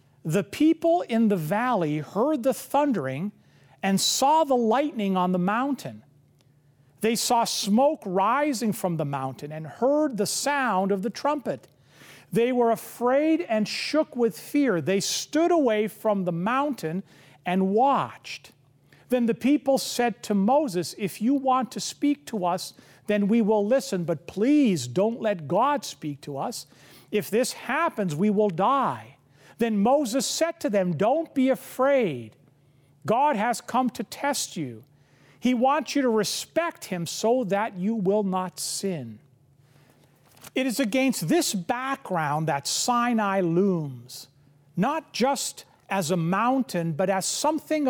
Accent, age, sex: American, 50-69, male